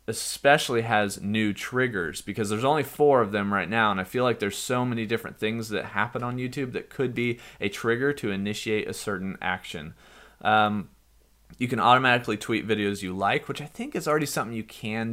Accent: American